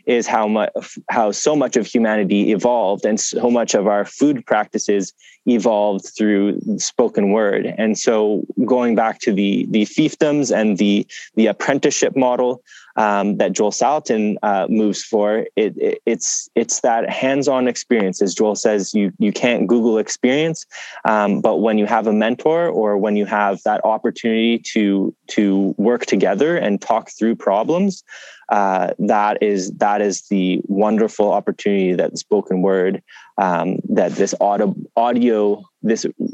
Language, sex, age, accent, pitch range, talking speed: English, male, 20-39, American, 100-120 Hz, 155 wpm